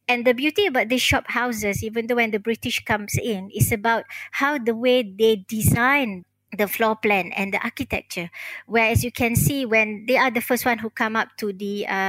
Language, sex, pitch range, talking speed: English, male, 200-240 Hz, 215 wpm